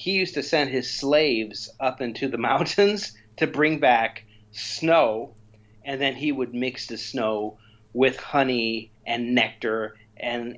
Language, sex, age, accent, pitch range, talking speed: English, male, 30-49, American, 110-150 Hz, 145 wpm